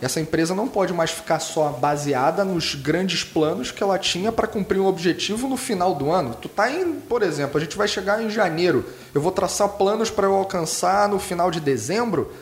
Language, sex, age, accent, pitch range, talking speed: Portuguese, male, 20-39, Brazilian, 145-205 Hz, 215 wpm